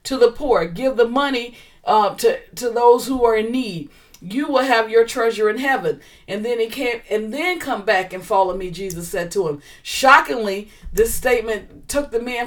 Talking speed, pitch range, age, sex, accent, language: 200 wpm, 200-255 Hz, 40-59, female, American, English